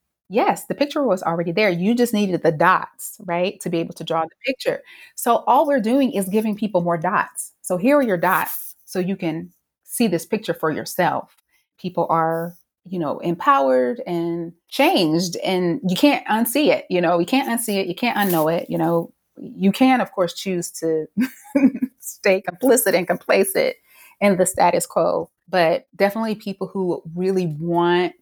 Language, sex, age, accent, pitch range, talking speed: English, female, 30-49, American, 170-220 Hz, 180 wpm